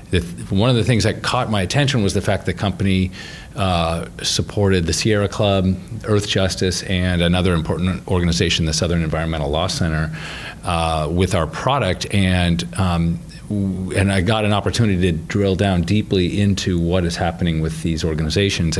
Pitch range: 85-100 Hz